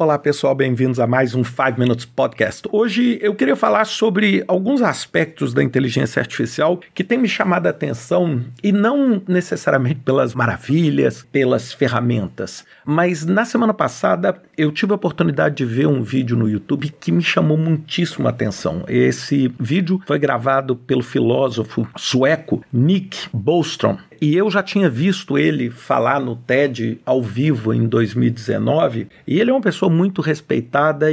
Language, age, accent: Portuguese, 50-69, Brazilian